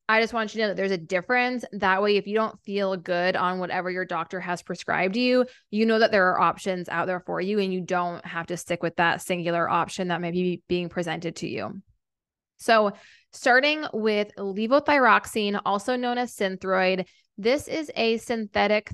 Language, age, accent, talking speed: English, 20-39, American, 200 wpm